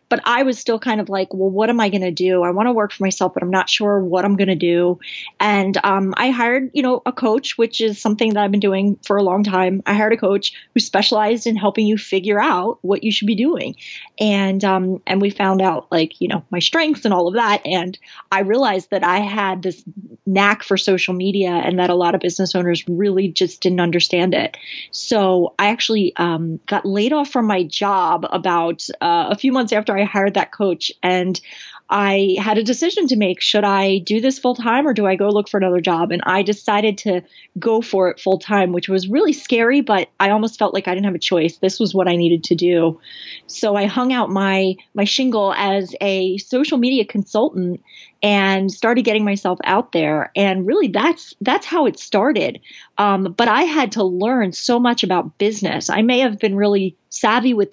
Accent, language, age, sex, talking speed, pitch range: American, English, 20-39, female, 220 wpm, 185-220 Hz